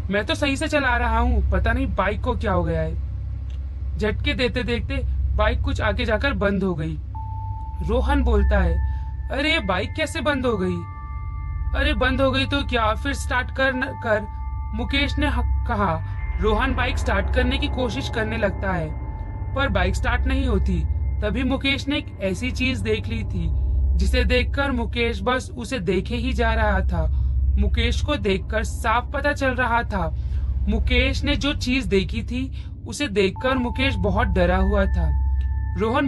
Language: Hindi